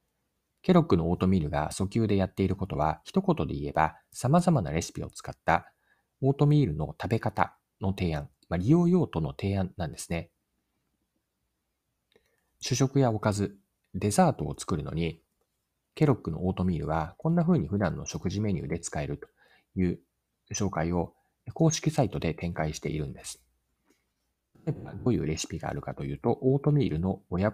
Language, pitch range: Japanese, 85-140 Hz